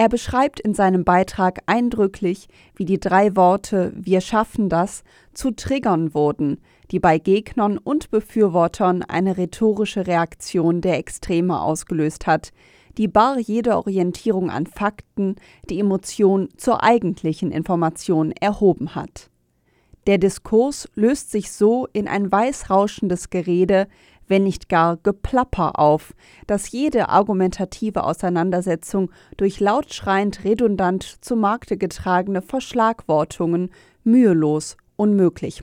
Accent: German